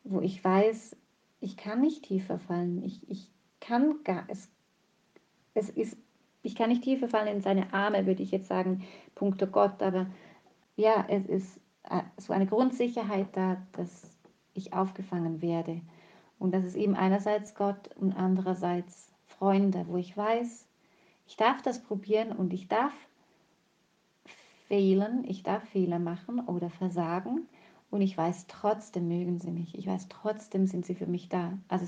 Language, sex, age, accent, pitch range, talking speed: German, female, 30-49, German, 185-210 Hz, 145 wpm